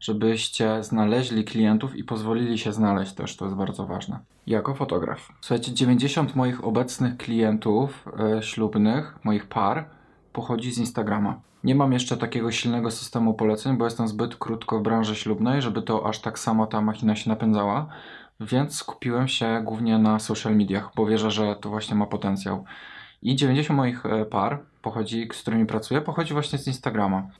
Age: 20-39